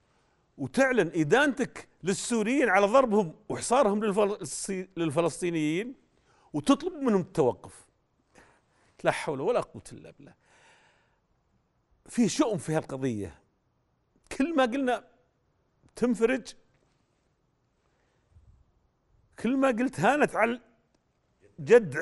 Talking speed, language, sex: 85 wpm, Arabic, male